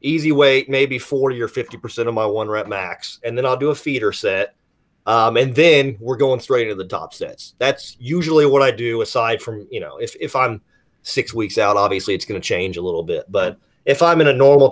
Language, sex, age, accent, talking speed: English, male, 30-49, American, 235 wpm